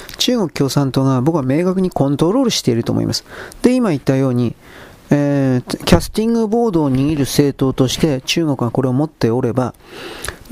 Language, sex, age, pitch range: Japanese, male, 40-59, 125-160 Hz